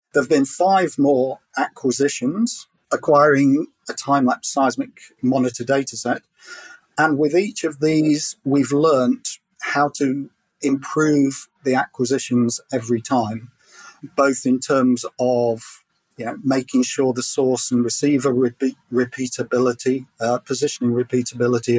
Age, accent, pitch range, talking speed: 40-59, British, 125-145 Hz, 115 wpm